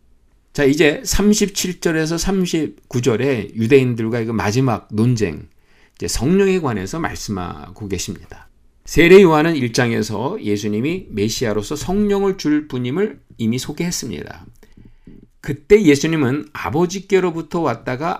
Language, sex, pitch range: Korean, male, 105-165 Hz